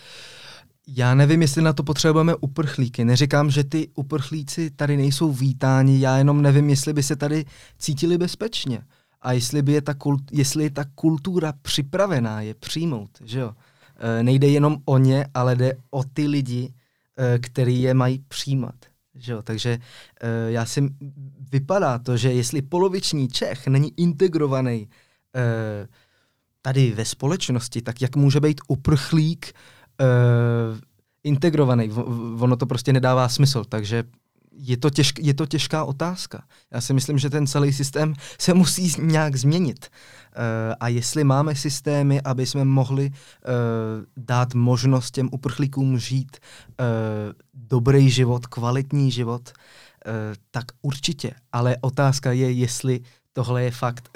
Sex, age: male, 20-39